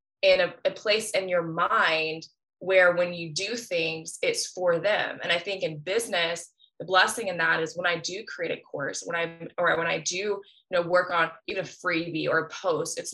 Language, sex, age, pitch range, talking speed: English, female, 20-39, 170-210 Hz, 215 wpm